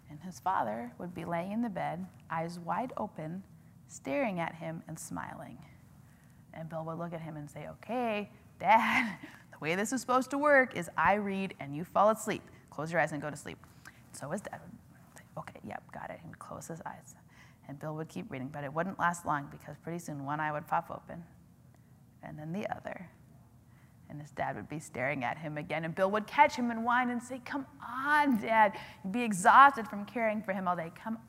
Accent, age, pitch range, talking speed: American, 30-49, 160-225 Hz, 220 wpm